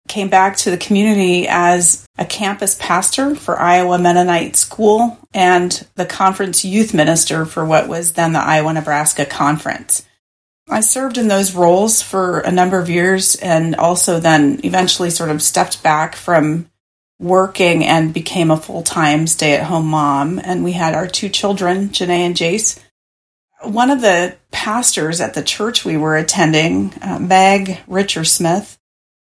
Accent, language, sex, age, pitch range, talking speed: American, English, female, 40-59, 165-195 Hz, 150 wpm